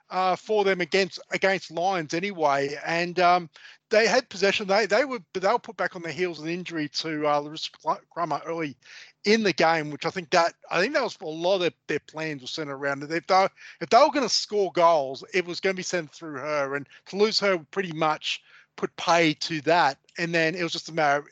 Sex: male